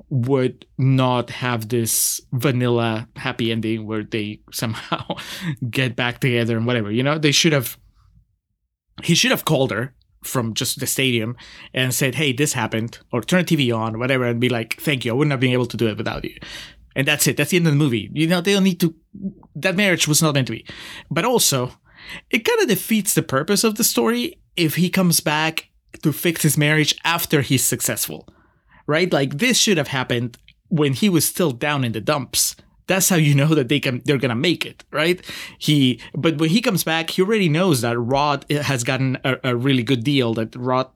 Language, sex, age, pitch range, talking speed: English, male, 30-49, 125-170 Hz, 215 wpm